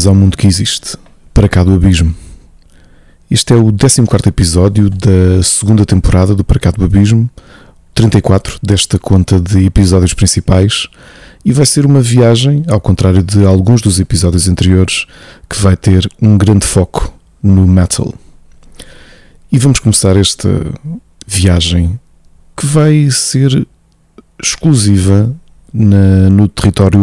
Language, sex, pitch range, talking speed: Portuguese, male, 95-115 Hz, 130 wpm